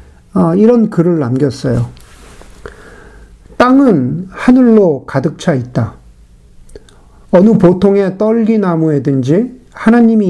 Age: 50-69